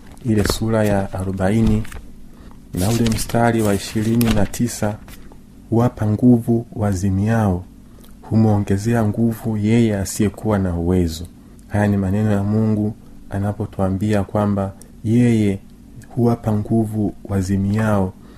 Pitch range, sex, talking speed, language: 95-115 Hz, male, 120 wpm, Swahili